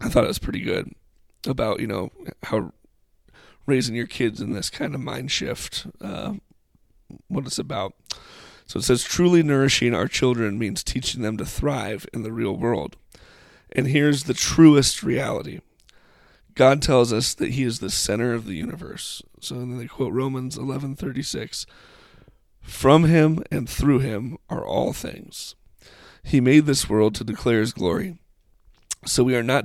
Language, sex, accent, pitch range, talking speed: English, male, American, 110-135 Hz, 165 wpm